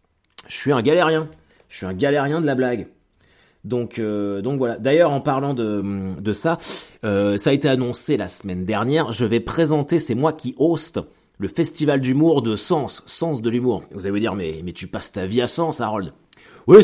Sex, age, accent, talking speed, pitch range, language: male, 30-49, French, 205 wpm, 95-135 Hz, French